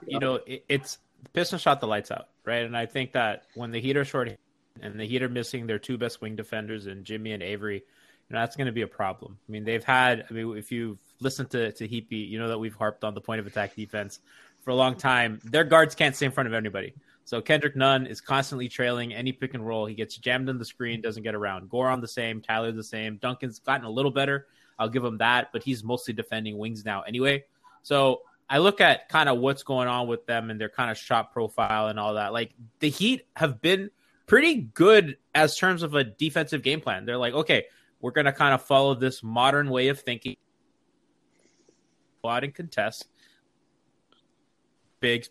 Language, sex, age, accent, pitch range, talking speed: English, male, 20-39, American, 110-135 Hz, 225 wpm